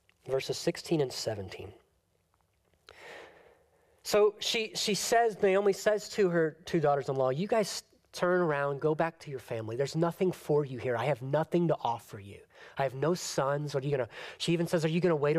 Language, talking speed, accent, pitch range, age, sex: English, 185 wpm, American, 140-195 Hz, 30-49, male